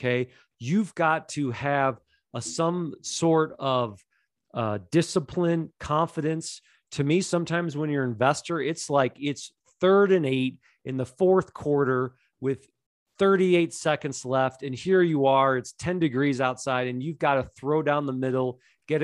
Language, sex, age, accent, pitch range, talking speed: English, male, 40-59, American, 130-170 Hz, 160 wpm